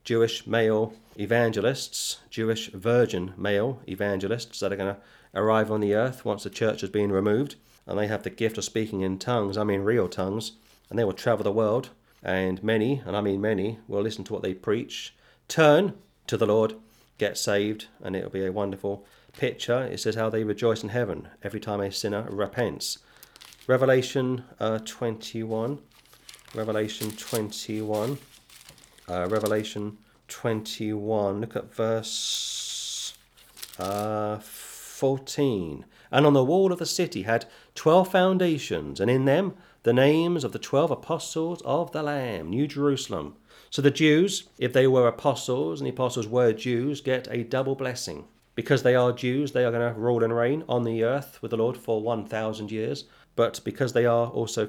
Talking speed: 170 wpm